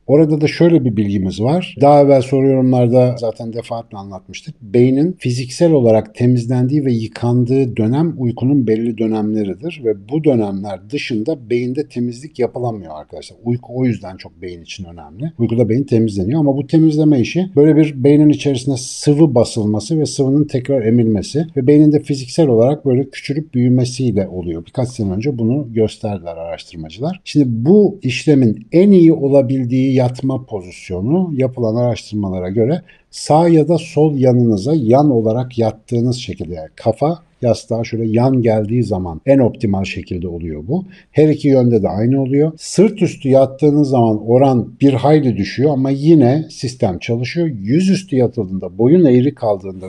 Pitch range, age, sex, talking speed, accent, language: 110-145 Hz, 60-79, male, 150 wpm, native, Turkish